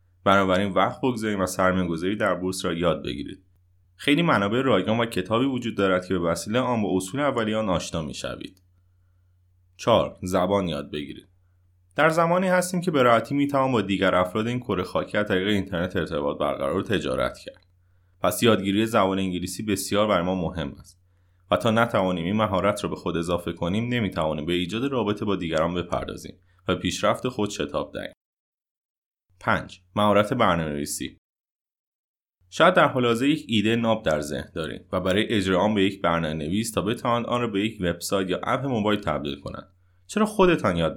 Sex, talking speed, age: male, 175 wpm, 30-49